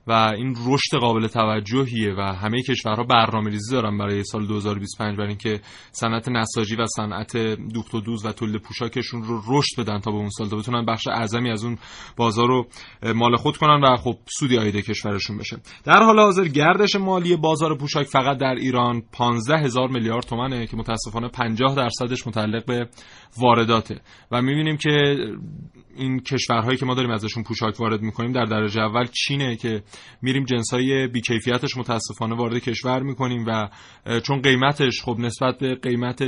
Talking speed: 165 wpm